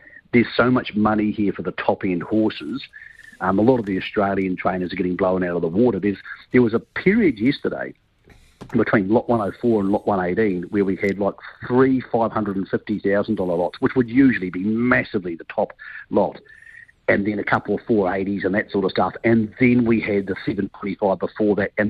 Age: 50-69